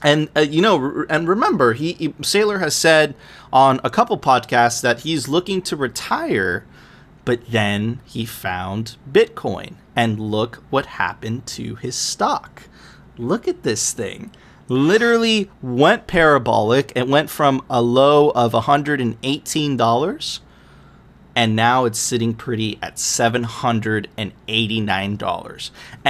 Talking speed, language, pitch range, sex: 125 wpm, English, 115-145 Hz, male